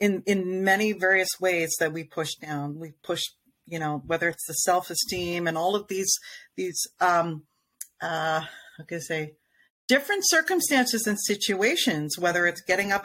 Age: 40-59